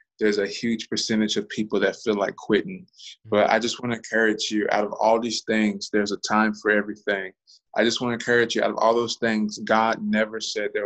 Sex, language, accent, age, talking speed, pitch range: male, English, American, 20-39, 230 wpm, 105-115 Hz